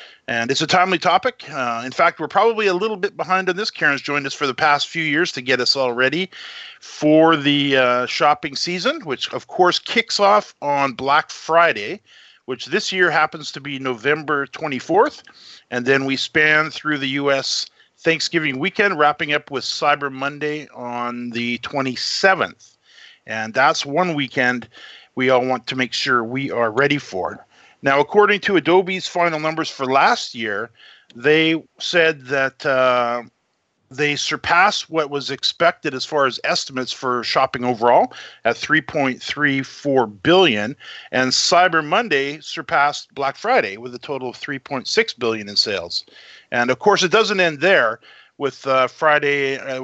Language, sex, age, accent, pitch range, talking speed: English, male, 50-69, American, 130-165 Hz, 160 wpm